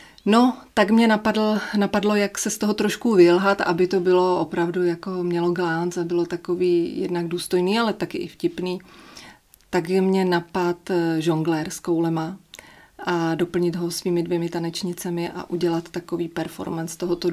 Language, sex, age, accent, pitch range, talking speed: Czech, female, 30-49, native, 175-195 Hz, 155 wpm